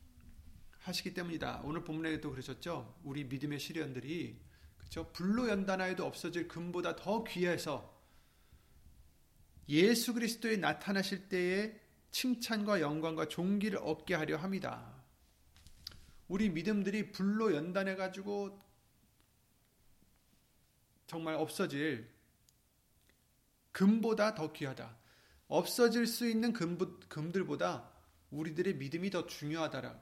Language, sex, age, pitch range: Korean, male, 30-49, 125-185 Hz